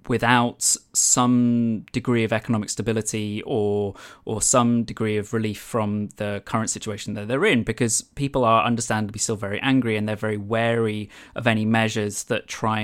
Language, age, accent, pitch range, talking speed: English, 20-39, British, 105-120 Hz, 165 wpm